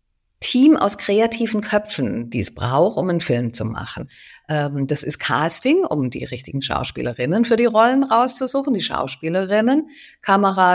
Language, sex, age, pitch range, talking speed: German, female, 50-69, 155-210 Hz, 145 wpm